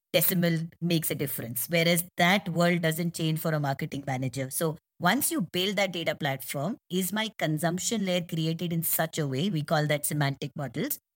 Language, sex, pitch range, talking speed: English, female, 150-180 Hz, 185 wpm